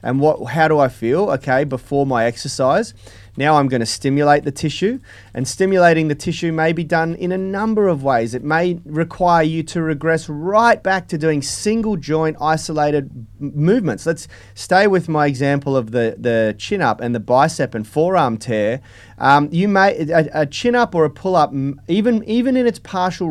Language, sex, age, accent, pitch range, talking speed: English, male, 30-49, Australian, 135-175 Hz, 190 wpm